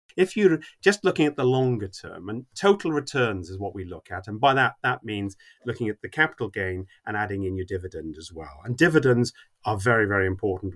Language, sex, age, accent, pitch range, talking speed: English, male, 30-49, British, 100-140 Hz, 220 wpm